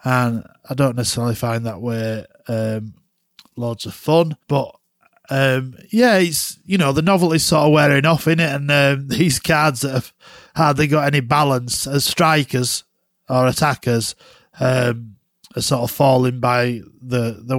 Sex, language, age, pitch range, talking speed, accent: male, English, 20-39, 125-150 Hz, 160 wpm, British